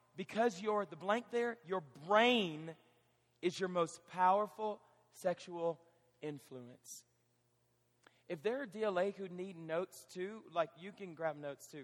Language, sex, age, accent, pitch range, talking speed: English, male, 40-59, American, 145-210 Hz, 135 wpm